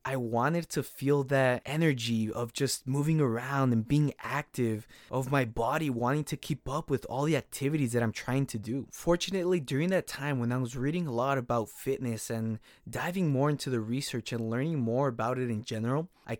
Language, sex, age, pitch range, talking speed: English, male, 20-39, 125-155 Hz, 200 wpm